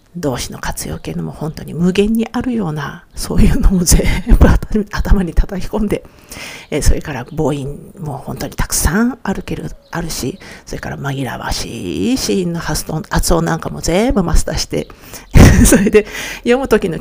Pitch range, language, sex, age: 165-220 Hz, Japanese, female, 50-69